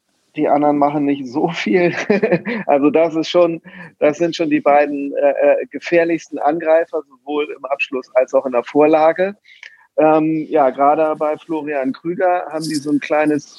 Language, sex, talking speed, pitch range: German, male, 165 wpm, 140-170 Hz